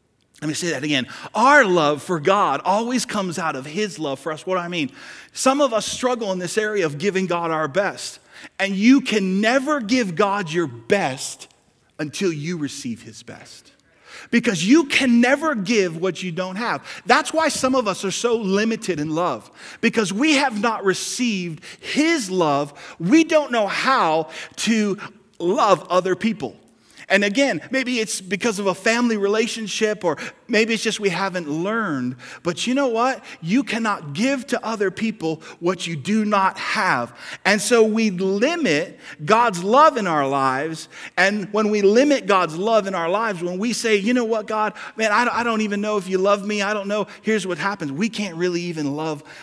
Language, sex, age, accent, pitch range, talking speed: English, male, 40-59, American, 160-225 Hz, 190 wpm